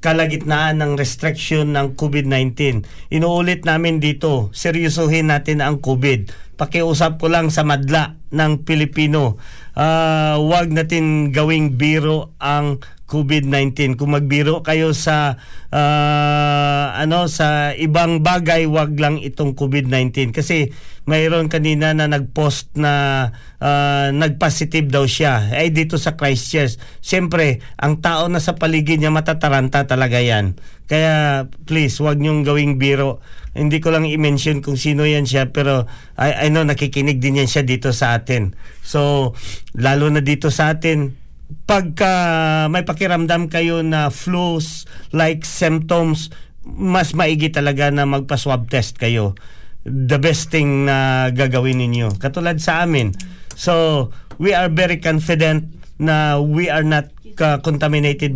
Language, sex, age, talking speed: Filipino, male, 40-59, 135 wpm